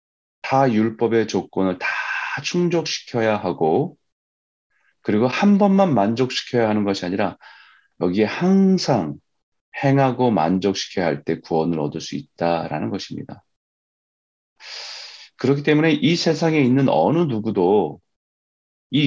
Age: 30-49